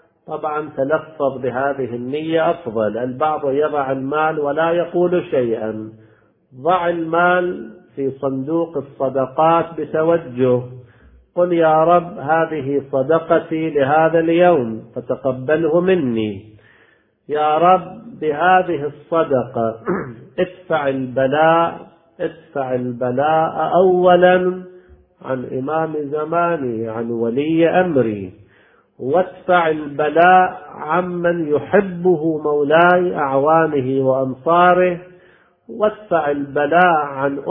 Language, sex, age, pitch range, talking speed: Arabic, male, 50-69, 130-165 Hz, 80 wpm